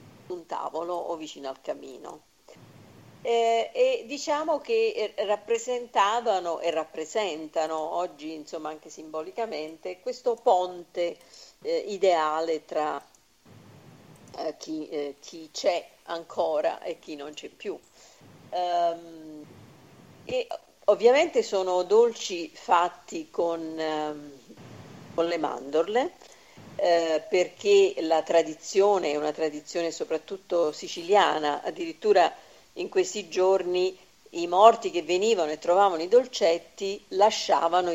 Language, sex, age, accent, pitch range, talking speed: Italian, female, 50-69, native, 155-215 Hz, 105 wpm